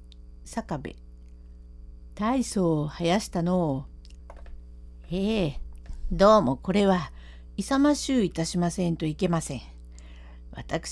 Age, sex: 50-69, female